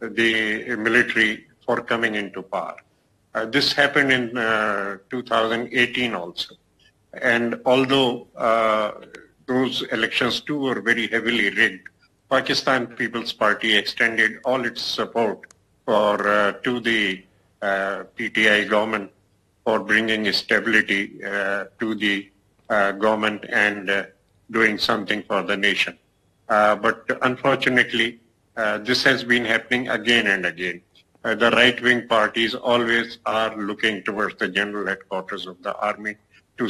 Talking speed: 130 wpm